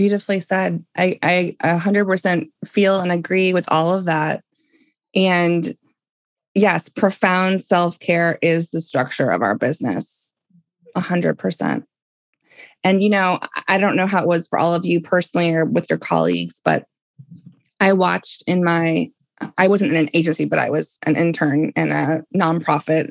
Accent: American